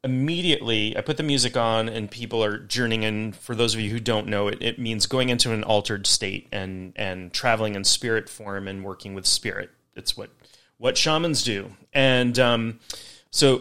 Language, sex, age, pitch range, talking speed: English, male, 30-49, 110-135 Hz, 195 wpm